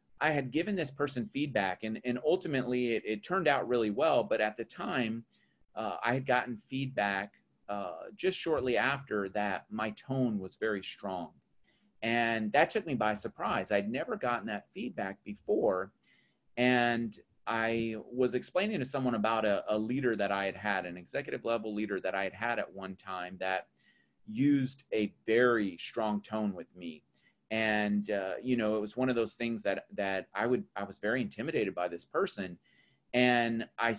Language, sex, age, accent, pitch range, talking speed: English, male, 30-49, American, 100-125 Hz, 180 wpm